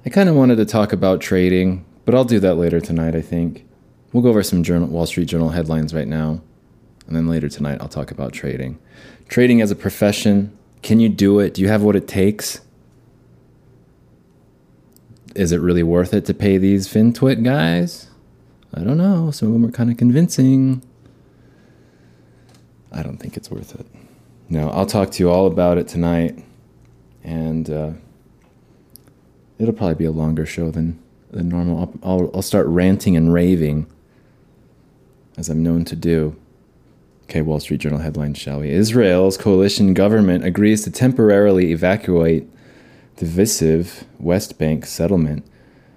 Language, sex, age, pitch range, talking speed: English, male, 30-49, 80-105 Hz, 160 wpm